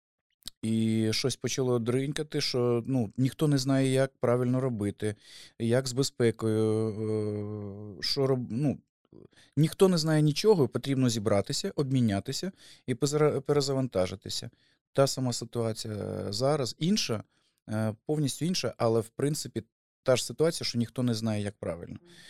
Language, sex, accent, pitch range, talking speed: Ukrainian, male, native, 110-135 Hz, 125 wpm